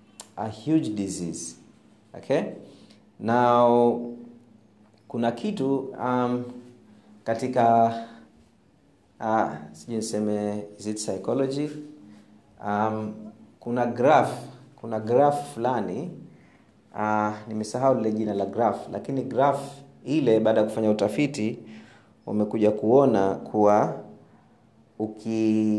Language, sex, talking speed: Swahili, male, 85 wpm